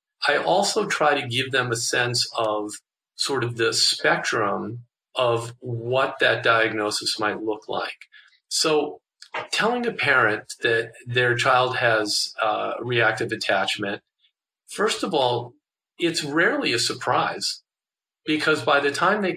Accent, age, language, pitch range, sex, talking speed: American, 50-69, English, 115-155 Hz, male, 135 wpm